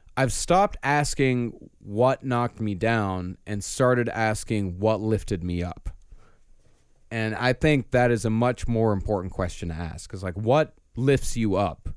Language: English